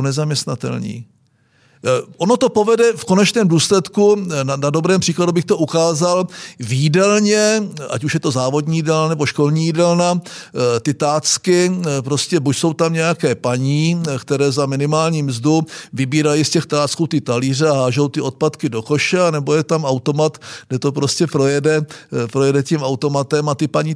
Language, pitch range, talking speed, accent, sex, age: Czech, 125-155 Hz, 155 wpm, native, male, 50-69